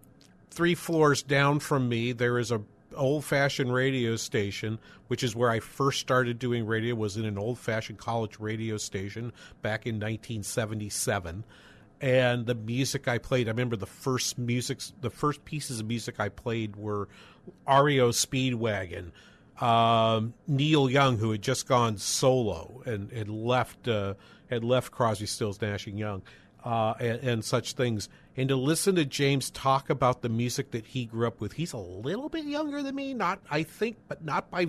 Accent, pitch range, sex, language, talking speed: American, 110-140 Hz, male, English, 175 wpm